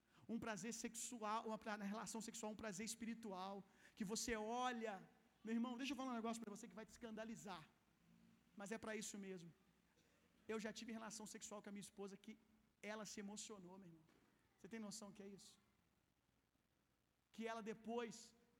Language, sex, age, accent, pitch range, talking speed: Gujarati, male, 50-69, Brazilian, 210-235 Hz, 180 wpm